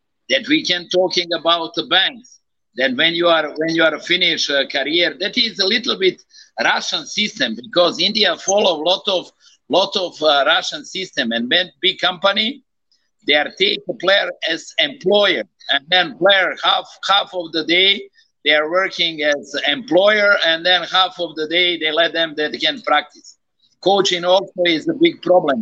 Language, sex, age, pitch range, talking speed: English, male, 50-69, 165-220 Hz, 180 wpm